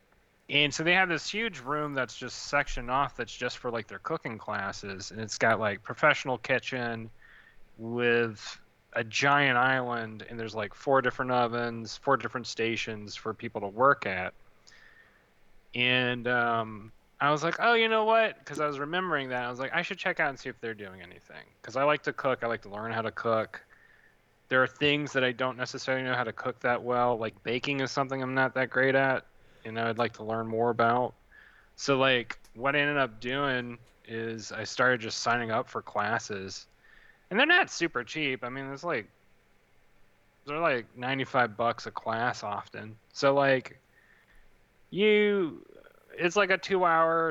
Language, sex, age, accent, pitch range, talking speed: English, male, 30-49, American, 115-145 Hz, 190 wpm